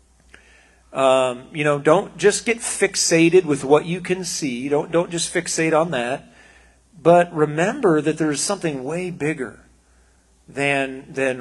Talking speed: 145 wpm